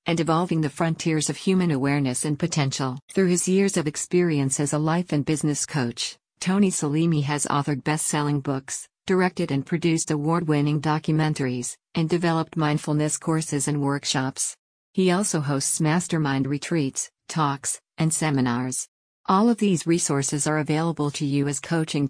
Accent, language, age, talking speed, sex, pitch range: American, English, 50-69, 150 wpm, female, 140-170 Hz